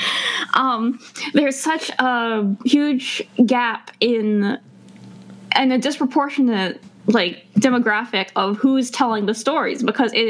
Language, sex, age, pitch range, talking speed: English, female, 10-29, 215-265 Hz, 110 wpm